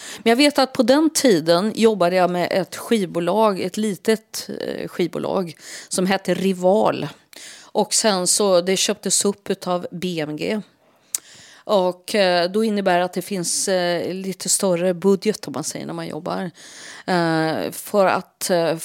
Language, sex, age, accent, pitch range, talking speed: Swedish, female, 30-49, native, 175-215 Hz, 140 wpm